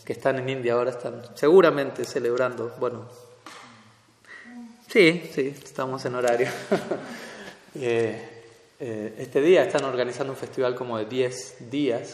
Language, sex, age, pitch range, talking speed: Spanish, male, 20-39, 120-150 Hz, 130 wpm